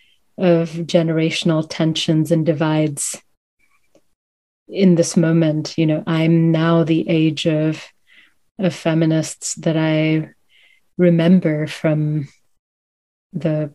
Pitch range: 155-175 Hz